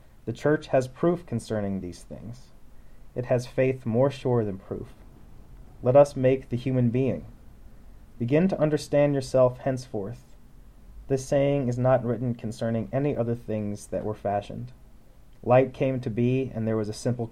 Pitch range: 115-130 Hz